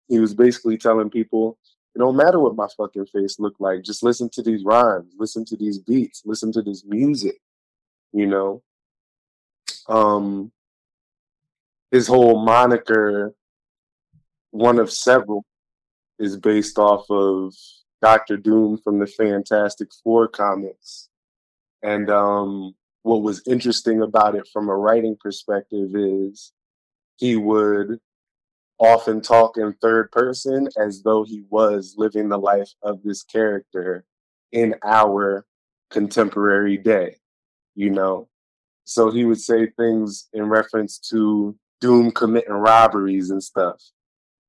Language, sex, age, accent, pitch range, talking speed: English, male, 20-39, American, 100-115 Hz, 130 wpm